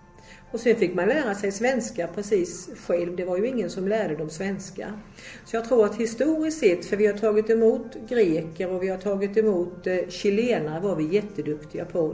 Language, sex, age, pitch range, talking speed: English, female, 50-69, 170-220 Hz, 195 wpm